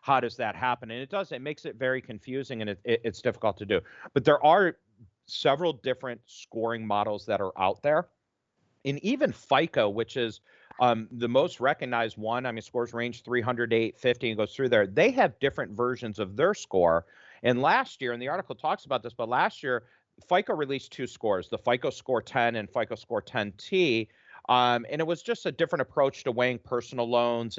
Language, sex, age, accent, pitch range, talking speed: English, male, 40-59, American, 115-140 Hz, 200 wpm